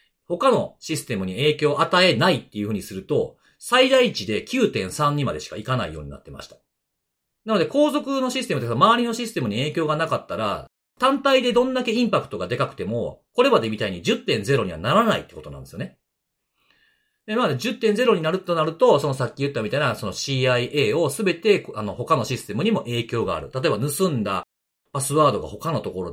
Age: 40-59